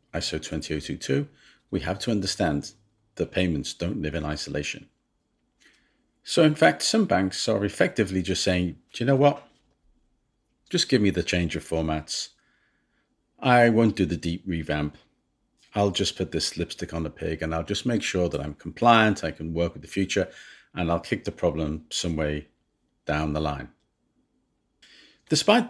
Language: English